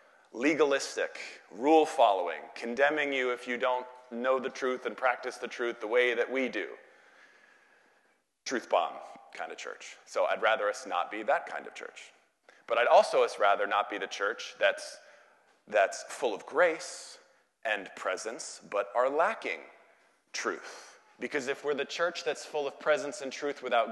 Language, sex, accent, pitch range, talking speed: English, male, American, 125-145 Hz, 165 wpm